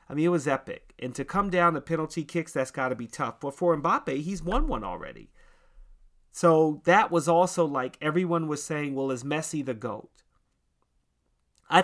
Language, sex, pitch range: English, male, 125-170 Hz